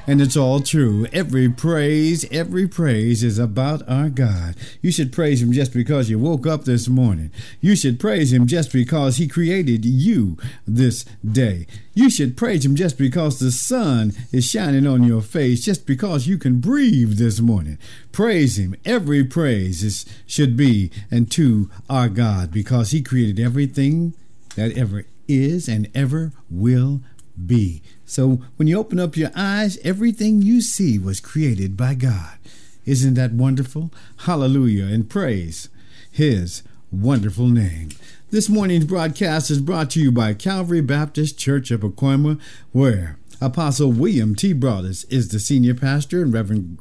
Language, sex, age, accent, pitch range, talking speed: English, male, 50-69, American, 115-150 Hz, 155 wpm